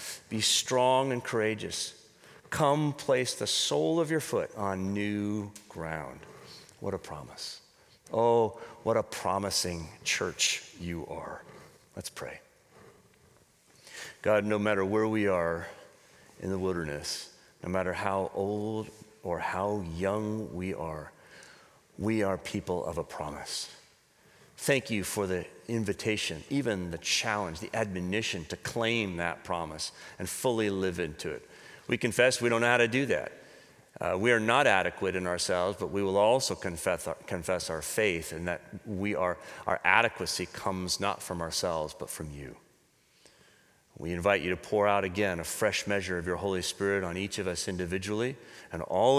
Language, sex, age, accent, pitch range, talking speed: English, male, 40-59, American, 90-115 Hz, 155 wpm